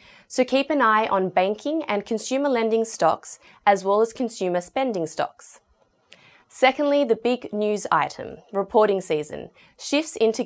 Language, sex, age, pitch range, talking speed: English, female, 20-39, 175-245 Hz, 145 wpm